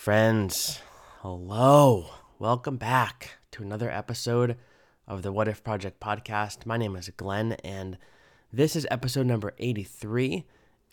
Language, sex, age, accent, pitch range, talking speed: English, male, 20-39, American, 100-120 Hz, 125 wpm